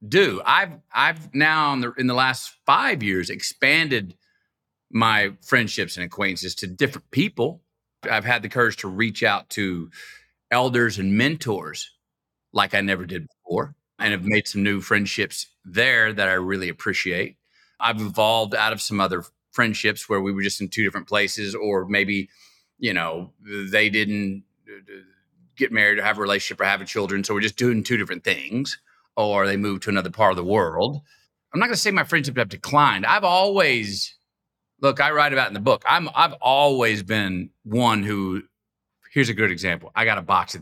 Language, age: English, 40-59